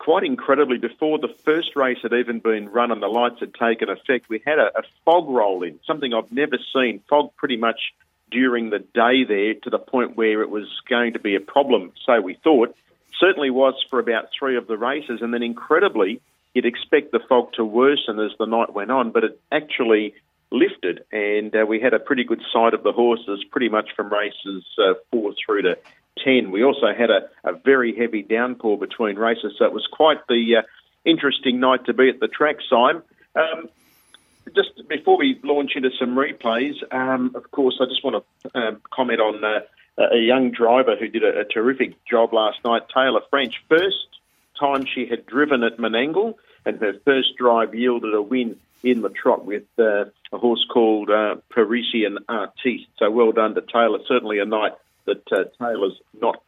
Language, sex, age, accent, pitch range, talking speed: English, male, 50-69, Australian, 115-140 Hz, 200 wpm